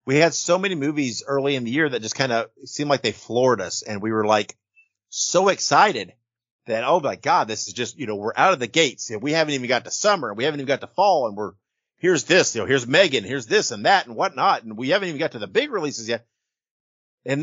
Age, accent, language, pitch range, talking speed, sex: 50-69, American, English, 115-160 Hz, 260 wpm, male